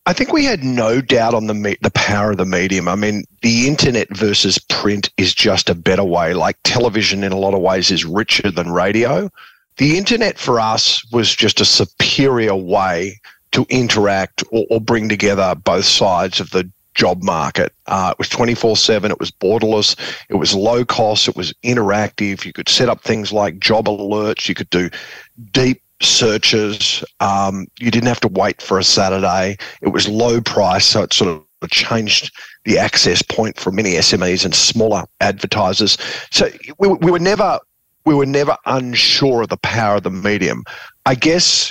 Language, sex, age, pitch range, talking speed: English, male, 40-59, 95-120 Hz, 185 wpm